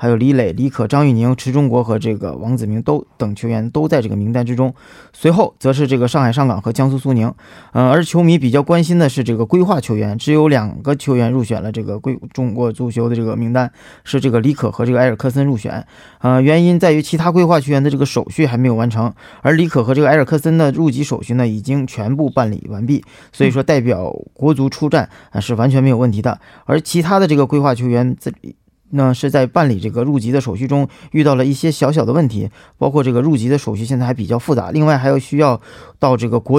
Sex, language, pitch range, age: male, Korean, 120-150 Hz, 20-39